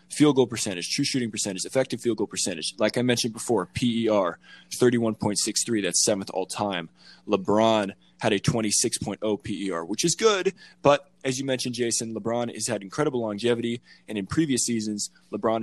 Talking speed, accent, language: 160 wpm, American, English